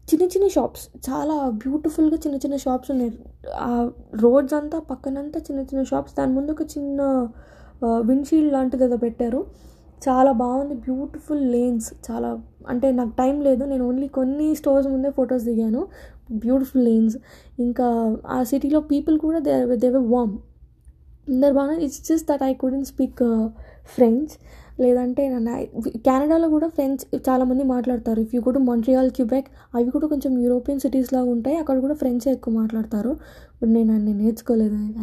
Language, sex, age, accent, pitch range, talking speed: Telugu, female, 10-29, native, 240-285 Hz, 145 wpm